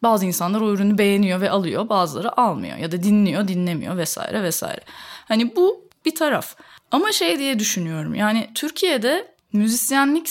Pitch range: 200-310 Hz